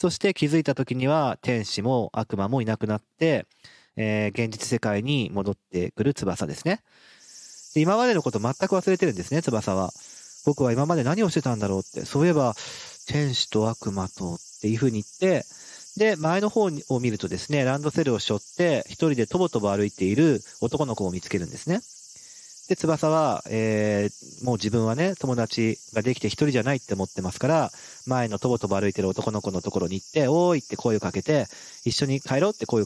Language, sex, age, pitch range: Japanese, male, 40-59, 100-150 Hz